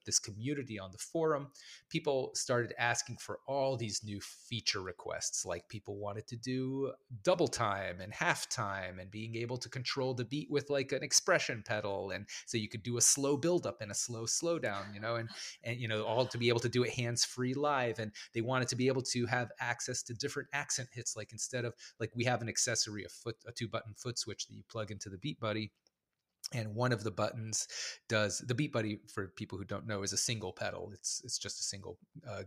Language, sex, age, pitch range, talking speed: English, male, 30-49, 105-120 Hz, 225 wpm